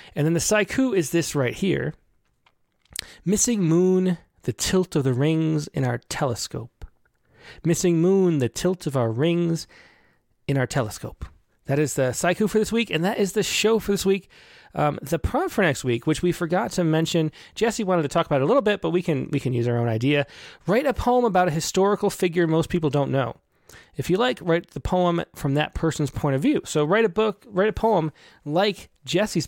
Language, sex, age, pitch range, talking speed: English, male, 30-49, 135-185 Hz, 210 wpm